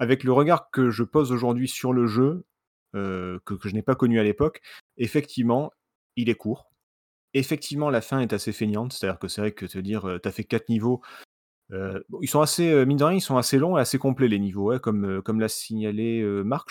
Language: French